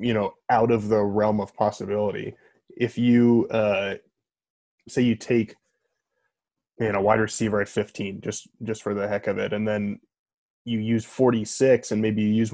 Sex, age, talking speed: male, 20-39, 175 wpm